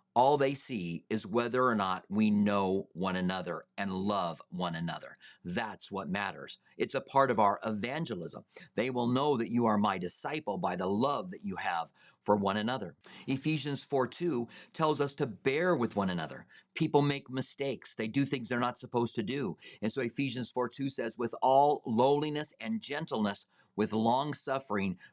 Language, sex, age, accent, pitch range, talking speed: English, male, 40-59, American, 105-140 Hz, 175 wpm